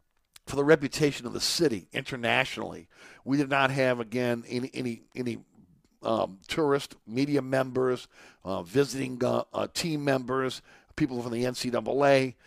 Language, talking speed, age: English, 140 wpm, 50-69